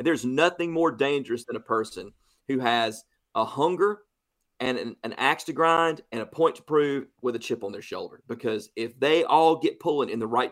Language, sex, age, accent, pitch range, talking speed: English, male, 40-59, American, 120-165 Hz, 215 wpm